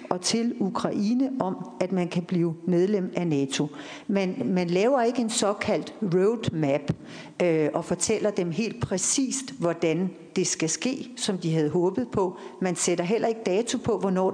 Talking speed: 160 wpm